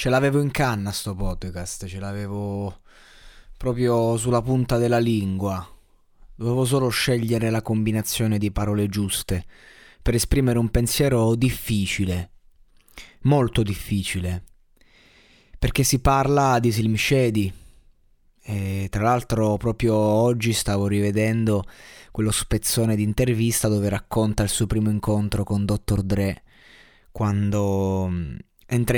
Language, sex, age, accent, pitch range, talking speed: Italian, male, 20-39, native, 100-120 Hz, 115 wpm